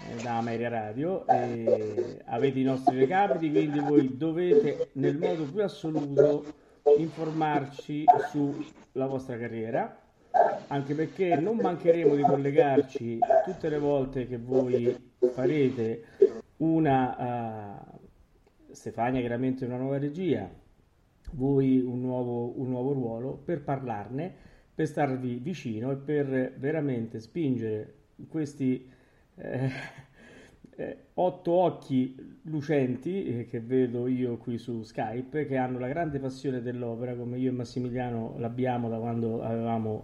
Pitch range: 120-145 Hz